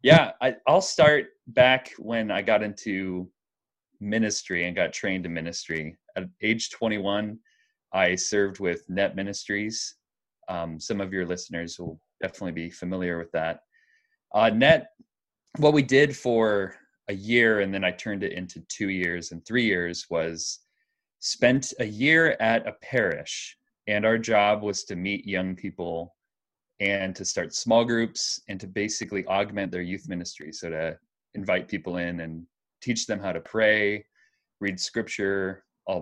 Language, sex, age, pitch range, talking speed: English, male, 20-39, 90-115 Hz, 155 wpm